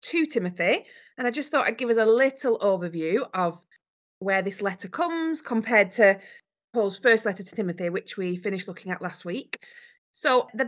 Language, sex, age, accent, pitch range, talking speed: English, female, 30-49, British, 185-240 Hz, 185 wpm